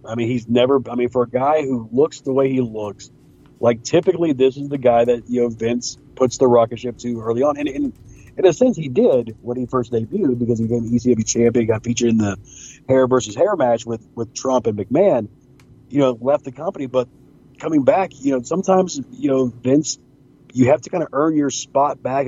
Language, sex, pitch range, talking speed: English, male, 115-135 Hz, 225 wpm